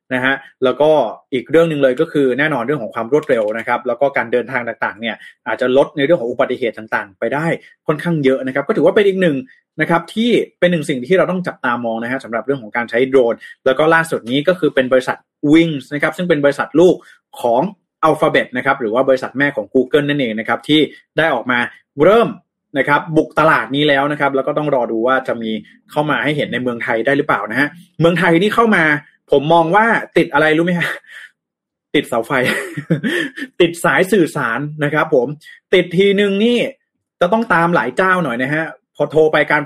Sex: male